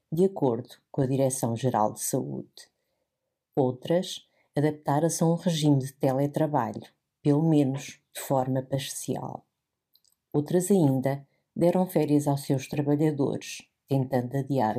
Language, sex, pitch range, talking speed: Portuguese, female, 125-155 Hz, 115 wpm